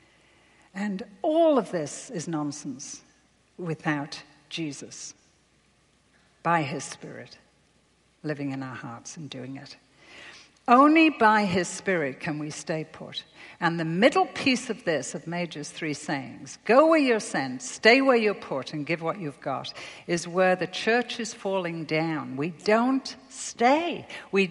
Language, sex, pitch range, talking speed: English, female, 170-270 Hz, 145 wpm